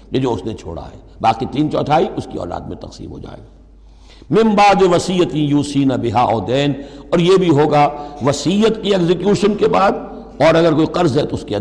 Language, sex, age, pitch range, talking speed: Urdu, male, 60-79, 120-180 Hz, 205 wpm